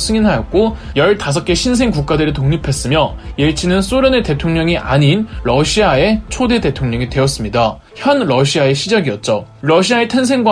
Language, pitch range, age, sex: Korean, 140-220 Hz, 20-39, male